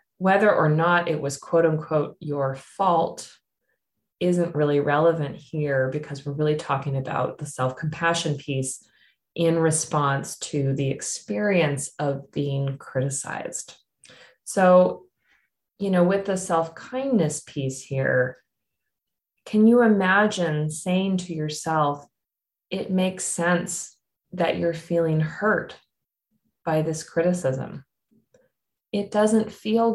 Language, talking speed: English, 110 wpm